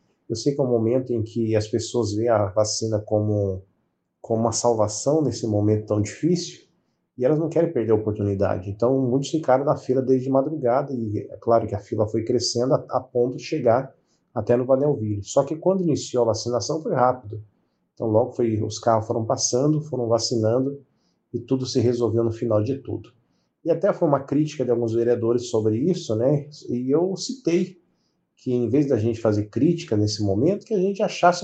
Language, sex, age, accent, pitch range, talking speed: Portuguese, male, 40-59, Brazilian, 115-150 Hz, 195 wpm